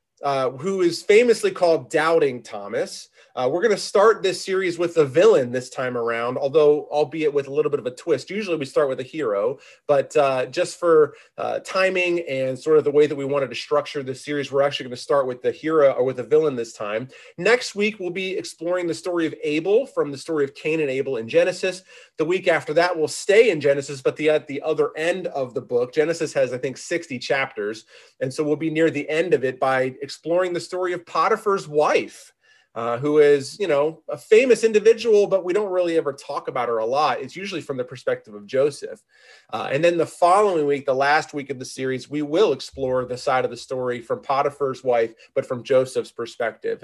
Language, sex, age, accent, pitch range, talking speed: English, male, 30-49, American, 140-190 Hz, 225 wpm